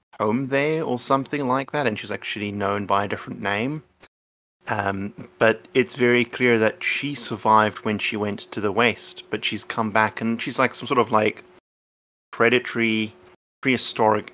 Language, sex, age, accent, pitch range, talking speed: English, male, 20-39, British, 105-120 Hz, 170 wpm